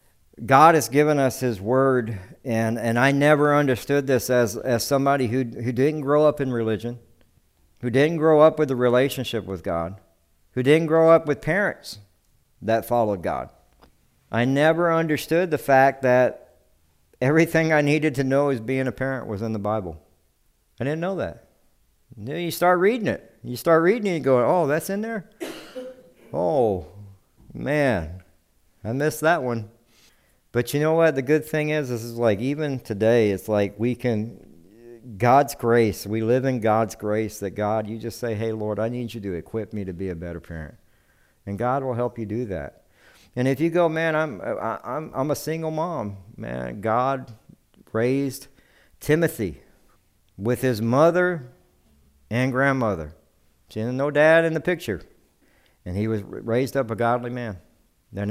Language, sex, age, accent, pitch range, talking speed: English, male, 60-79, American, 105-145 Hz, 175 wpm